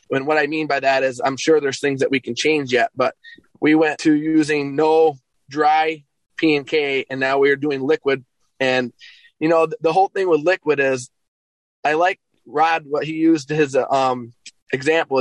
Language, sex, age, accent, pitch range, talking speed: English, male, 20-39, American, 135-160 Hz, 200 wpm